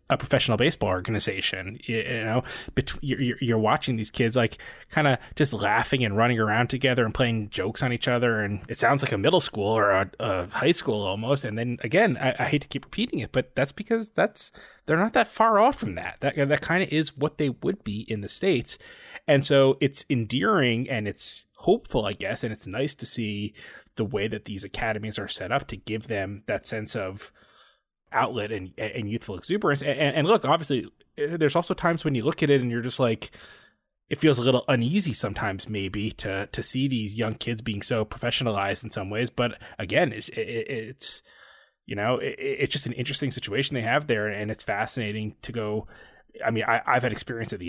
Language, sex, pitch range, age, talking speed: English, male, 105-140 Hz, 20-39, 215 wpm